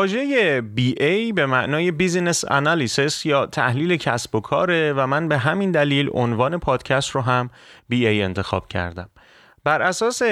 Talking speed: 145 wpm